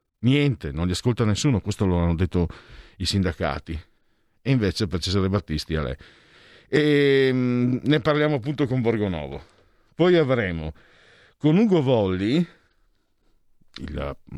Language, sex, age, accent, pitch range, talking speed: Italian, male, 50-69, native, 95-130 Hz, 125 wpm